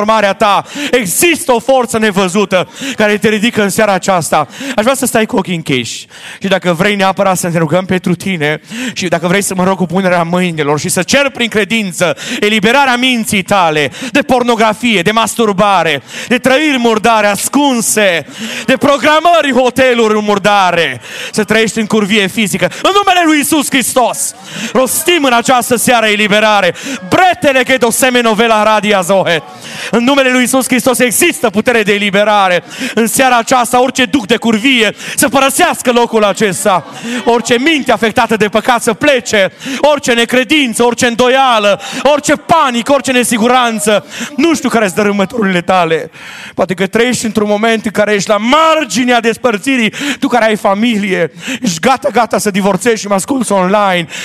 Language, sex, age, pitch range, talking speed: Romanian, male, 30-49, 195-255 Hz, 155 wpm